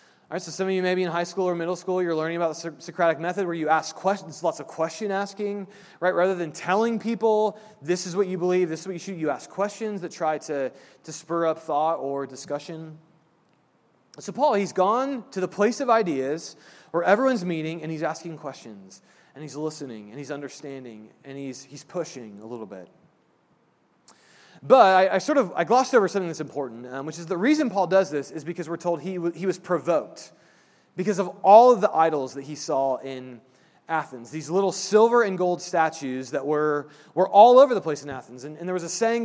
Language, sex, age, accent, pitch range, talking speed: English, male, 30-49, American, 150-190 Hz, 215 wpm